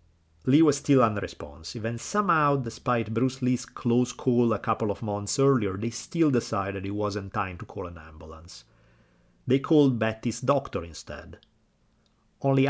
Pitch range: 95-125 Hz